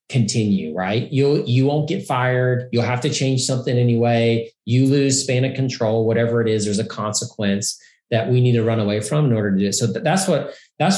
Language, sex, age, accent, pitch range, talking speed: English, male, 40-59, American, 115-155 Hz, 220 wpm